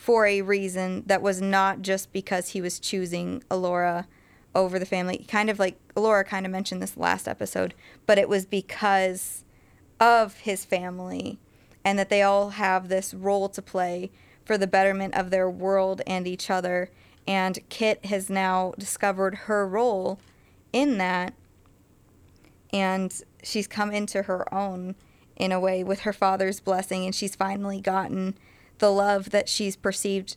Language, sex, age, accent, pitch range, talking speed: English, female, 20-39, American, 185-200 Hz, 160 wpm